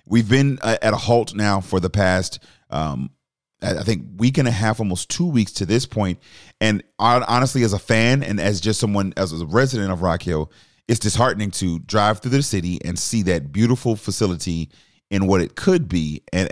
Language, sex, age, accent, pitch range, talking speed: English, male, 30-49, American, 90-120 Hz, 200 wpm